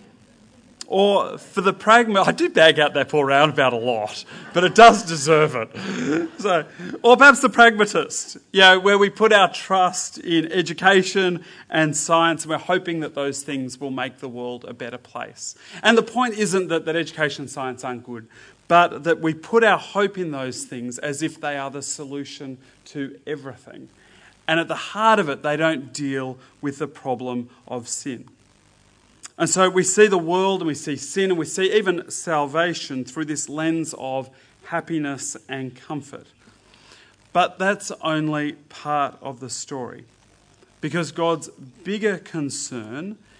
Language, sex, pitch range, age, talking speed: English, male, 135-180 Hz, 30-49, 170 wpm